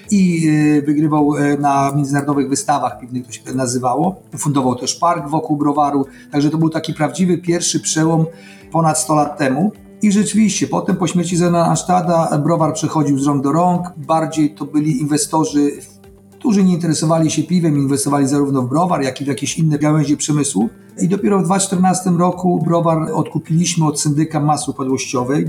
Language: Polish